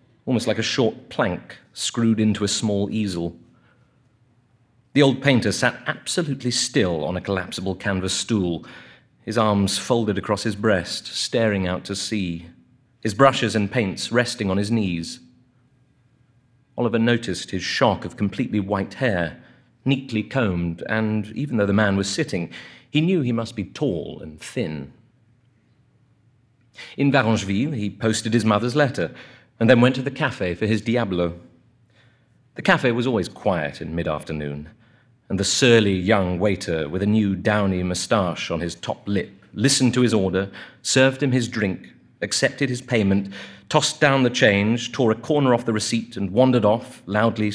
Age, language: 40-59, English